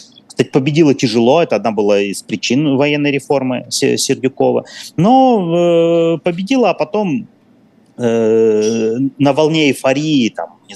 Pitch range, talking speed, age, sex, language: 105-180 Hz, 115 wpm, 30-49, male, Russian